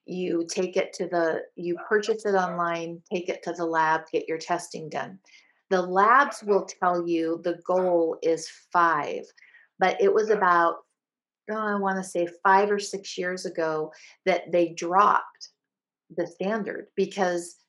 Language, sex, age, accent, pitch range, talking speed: English, female, 50-69, American, 170-195 Hz, 155 wpm